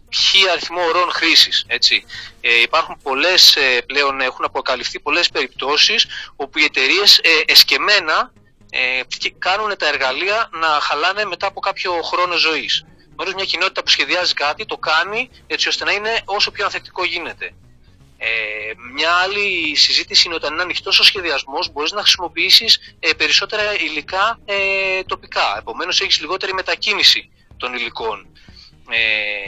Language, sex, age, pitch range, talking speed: Greek, male, 30-49, 130-210 Hz, 130 wpm